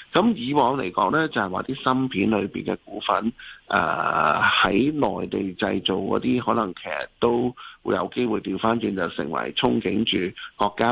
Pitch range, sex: 100-135 Hz, male